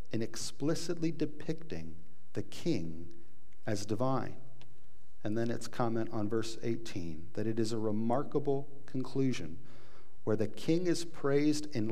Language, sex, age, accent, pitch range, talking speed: English, male, 50-69, American, 105-135 Hz, 130 wpm